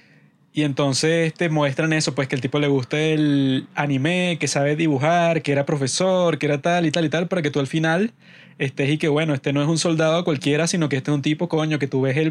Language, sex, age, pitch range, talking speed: Spanish, male, 20-39, 145-165 Hz, 255 wpm